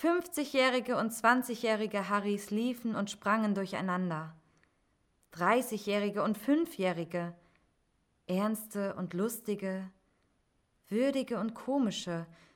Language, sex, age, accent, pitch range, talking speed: German, female, 20-39, German, 175-230 Hz, 80 wpm